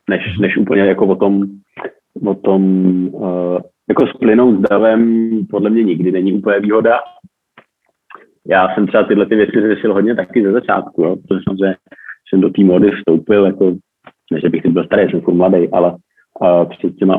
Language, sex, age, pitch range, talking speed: Slovak, male, 30-49, 95-100 Hz, 170 wpm